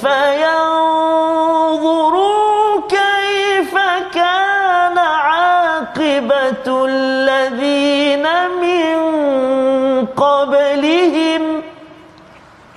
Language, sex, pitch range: Malayalam, male, 240-315 Hz